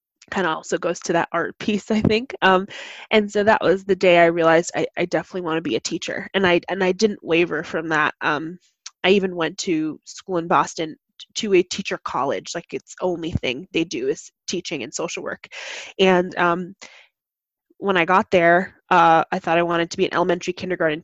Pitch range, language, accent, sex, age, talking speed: 170-205 Hz, English, American, female, 20-39, 210 wpm